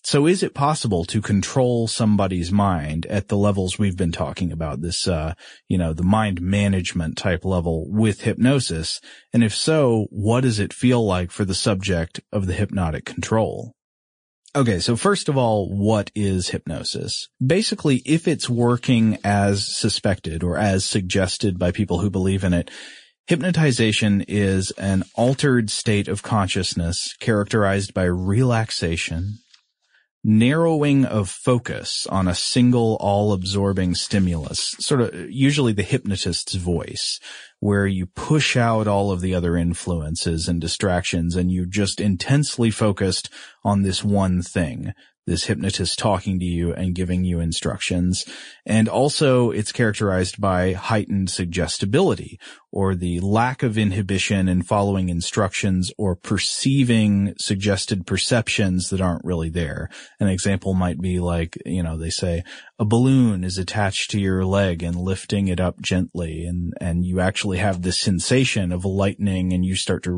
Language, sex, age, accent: English, male, 30-49, American